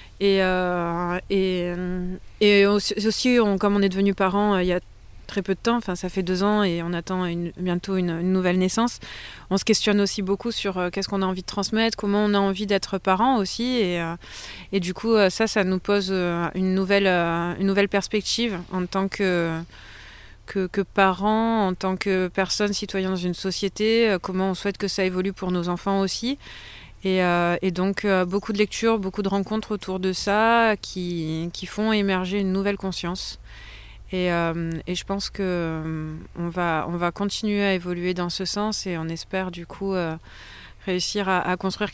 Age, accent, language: 30-49, French, French